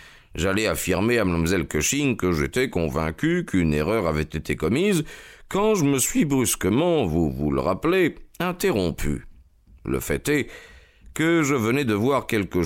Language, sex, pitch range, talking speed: French, male, 80-115 Hz, 150 wpm